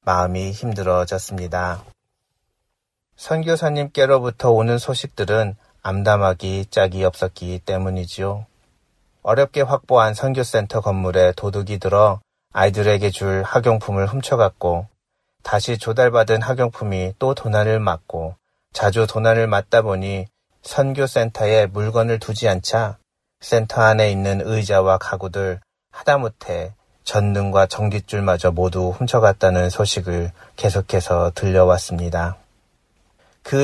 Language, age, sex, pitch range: Korean, 30-49, male, 95-115 Hz